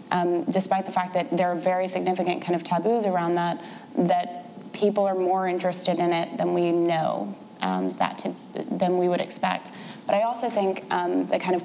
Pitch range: 175-190 Hz